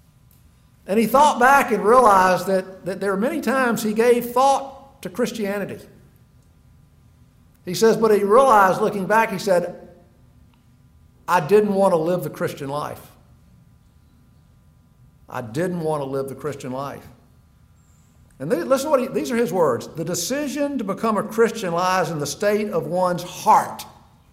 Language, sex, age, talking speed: English, male, 50-69, 155 wpm